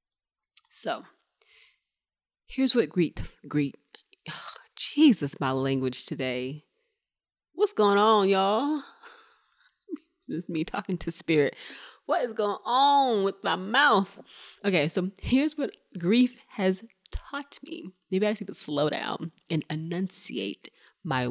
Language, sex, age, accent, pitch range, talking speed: English, female, 20-39, American, 150-220 Hz, 125 wpm